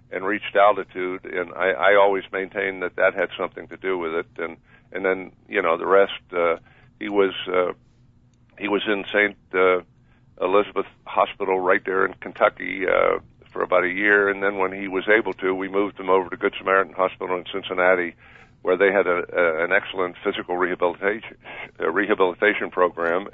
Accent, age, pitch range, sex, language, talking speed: American, 50-69, 95-115 Hz, male, English, 185 wpm